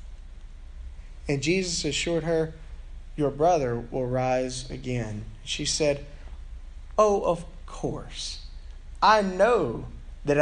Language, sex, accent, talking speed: English, male, American, 100 wpm